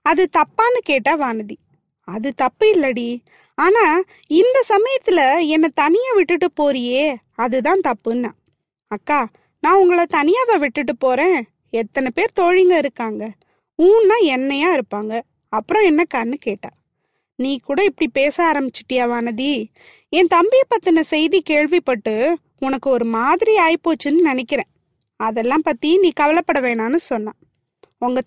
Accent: native